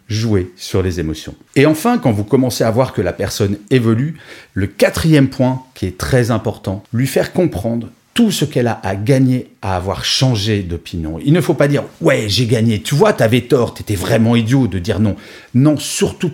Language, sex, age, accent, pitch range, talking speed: French, male, 40-59, French, 105-145 Hz, 200 wpm